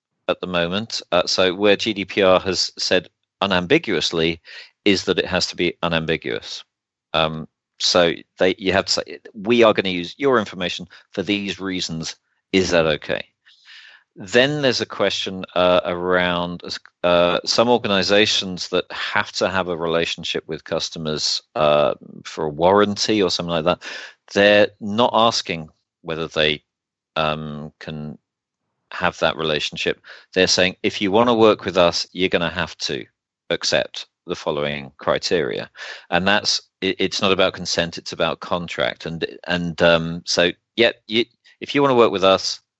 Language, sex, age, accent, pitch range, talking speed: English, male, 40-59, British, 80-100 Hz, 160 wpm